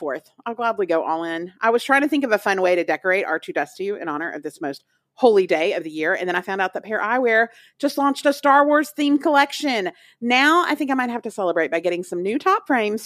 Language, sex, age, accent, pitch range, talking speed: English, female, 40-59, American, 200-285 Hz, 265 wpm